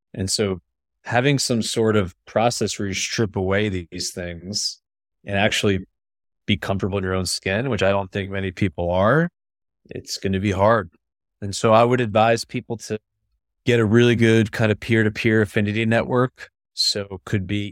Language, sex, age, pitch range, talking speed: English, male, 30-49, 95-115 Hz, 185 wpm